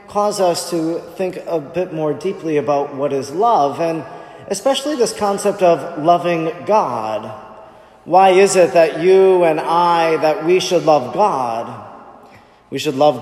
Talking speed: 155 wpm